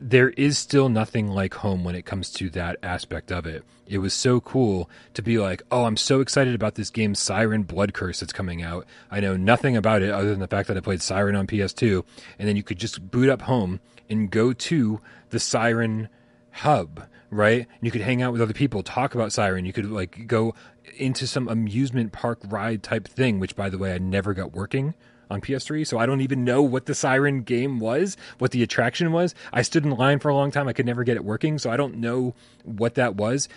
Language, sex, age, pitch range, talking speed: English, male, 30-49, 100-130 Hz, 230 wpm